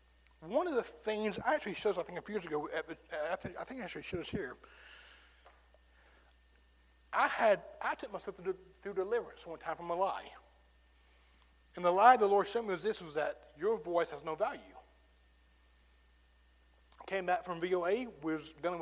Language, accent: English, American